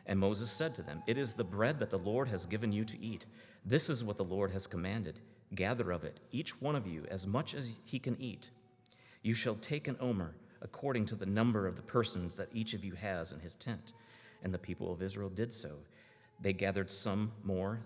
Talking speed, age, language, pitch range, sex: 230 wpm, 40-59, English, 95-120 Hz, male